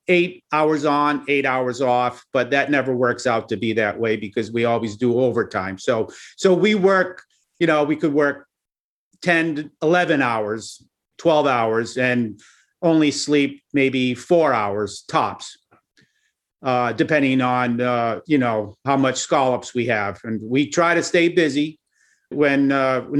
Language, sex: English, male